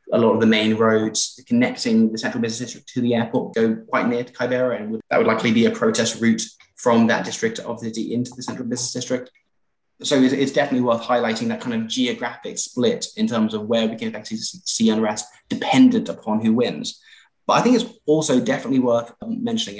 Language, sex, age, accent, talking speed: English, male, 20-39, British, 215 wpm